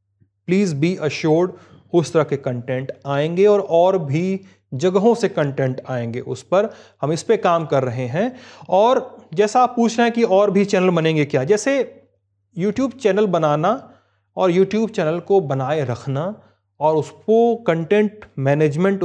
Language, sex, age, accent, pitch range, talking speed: Hindi, male, 30-49, native, 145-205 Hz, 160 wpm